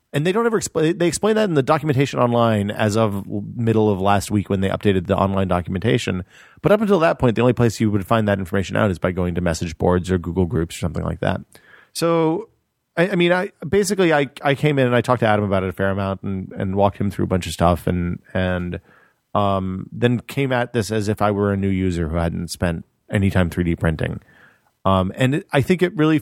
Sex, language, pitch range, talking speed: male, English, 95-130 Hz, 245 wpm